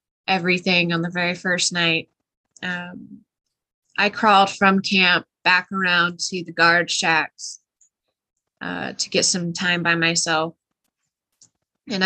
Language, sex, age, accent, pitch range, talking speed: English, female, 20-39, American, 175-210 Hz, 125 wpm